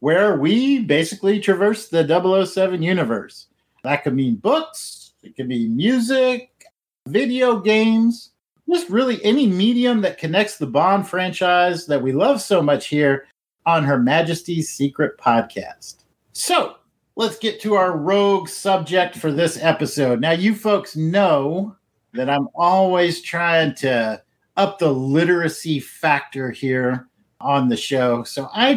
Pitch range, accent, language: 140-210 Hz, American, English